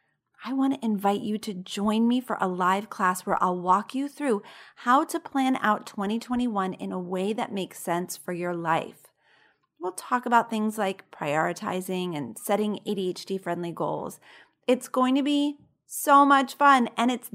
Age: 30-49